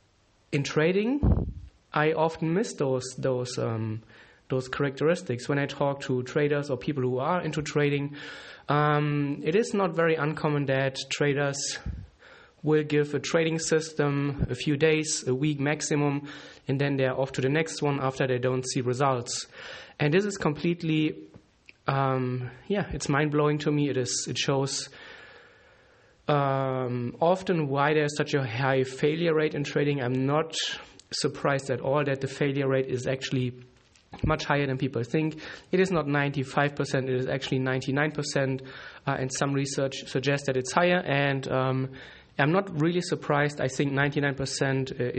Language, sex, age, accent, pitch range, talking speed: English, male, 20-39, German, 130-150 Hz, 160 wpm